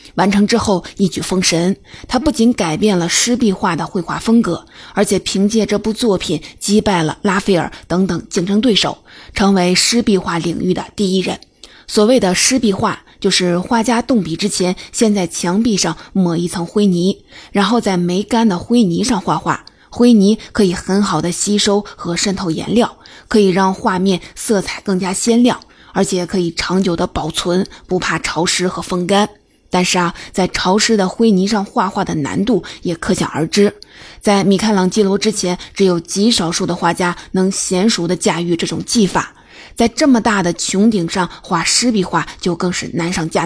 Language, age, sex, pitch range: Chinese, 20-39, female, 180-215 Hz